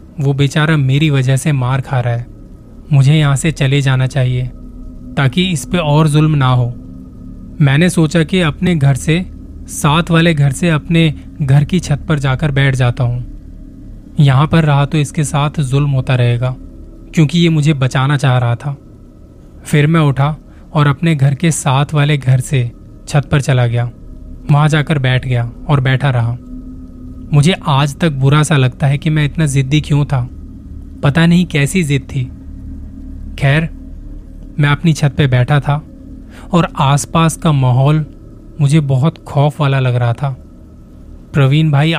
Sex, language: male, Hindi